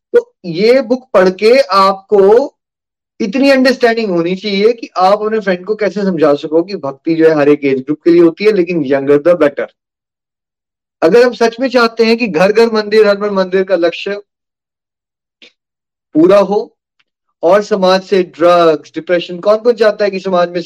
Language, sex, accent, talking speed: Hindi, male, native, 185 wpm